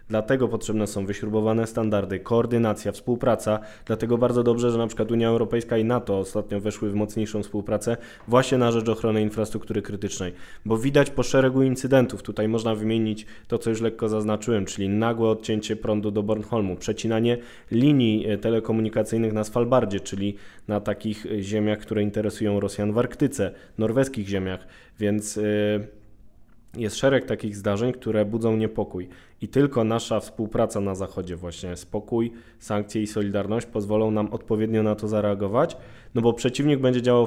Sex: male